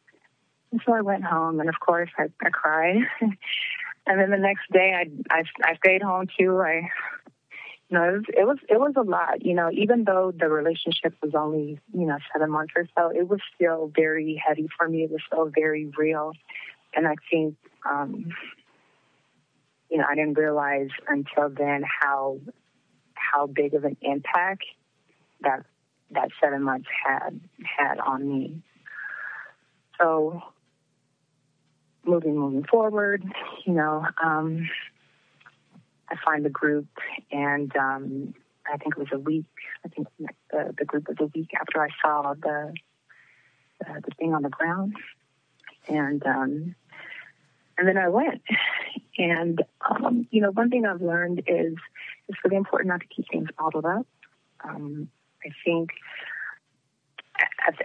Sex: female